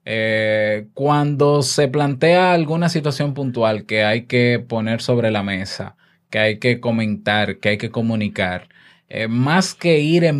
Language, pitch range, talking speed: Spanish, 120-160 Hz, 155 wpm